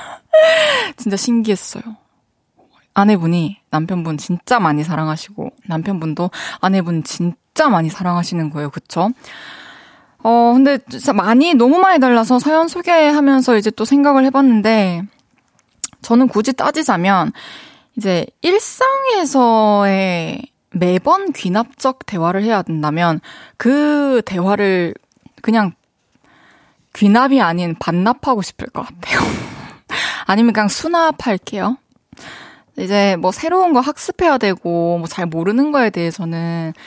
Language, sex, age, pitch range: Korean, female, 20-39, 185-270 Hz